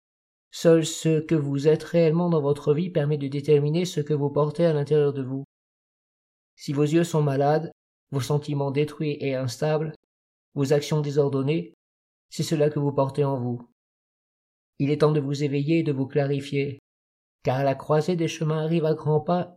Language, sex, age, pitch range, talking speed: French, male, 50-69, 145-165 Hz, 180 wpm